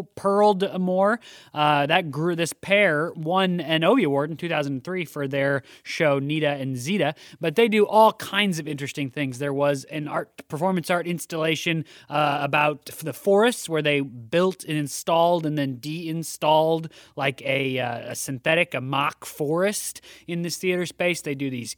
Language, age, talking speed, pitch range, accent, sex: English, 30-49, 165 wpm, 140-180 Hz, American, male